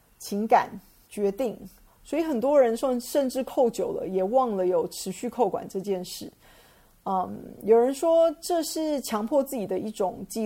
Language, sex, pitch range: Chinese, female, 195-245 Hz